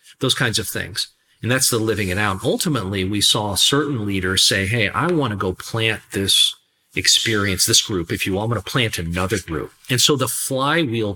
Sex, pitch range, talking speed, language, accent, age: male, 95-120 Hz, 210 wpm, English, American, 40-59